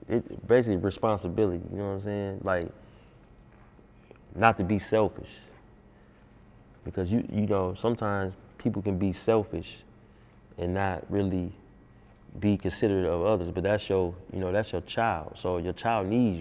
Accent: American